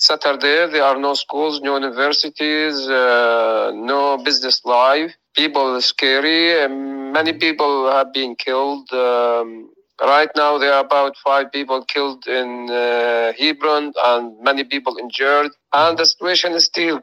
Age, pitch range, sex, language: 40-59, 120-145 Hz, male, Chinese